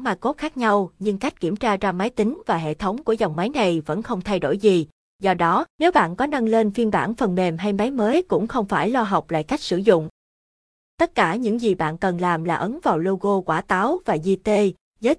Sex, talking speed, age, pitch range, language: female, 245 wpm, 20-39, 185-230 Hz, Vietnamese